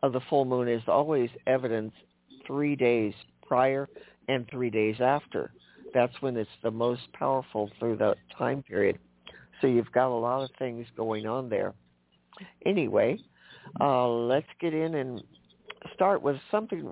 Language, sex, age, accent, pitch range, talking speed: English, male, 50-69, American, 115-150 Hz, 155 wpm